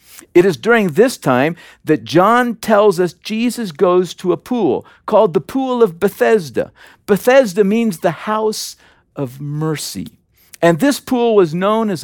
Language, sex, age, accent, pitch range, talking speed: English, male, 50-69, American, 155-220 Hz, 155 wpm